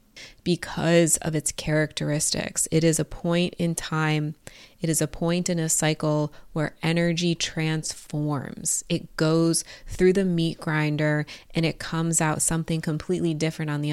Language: English